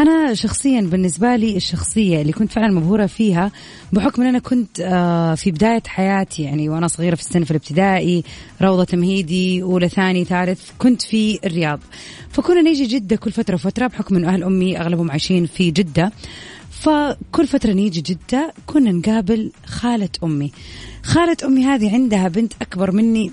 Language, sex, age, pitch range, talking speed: Arabic, female, 30-49, 175-230 Hz, 155 wpm